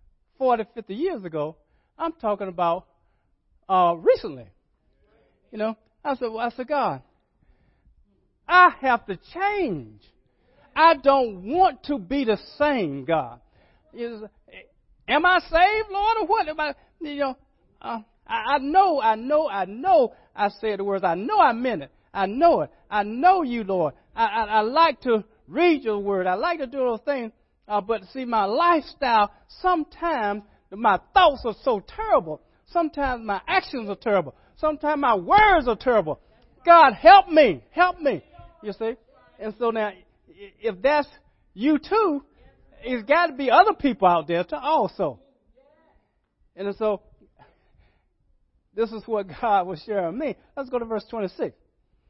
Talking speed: 160 wpm